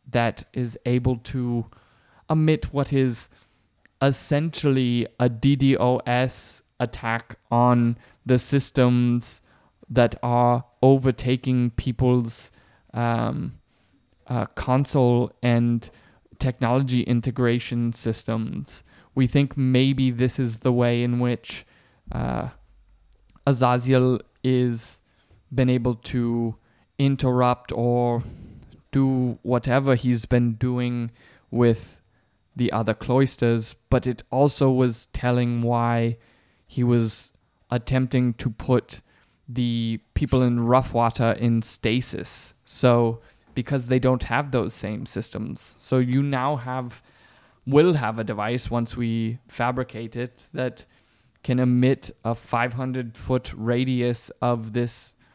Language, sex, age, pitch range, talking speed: English, male, 20-39, 115-130 Hz, 105 wpm